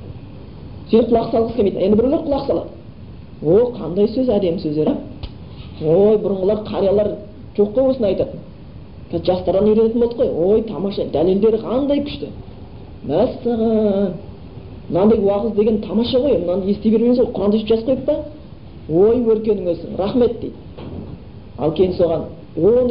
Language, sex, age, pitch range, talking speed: Bulgarian, female, 40-59, 170-220 Hz, 110 wpm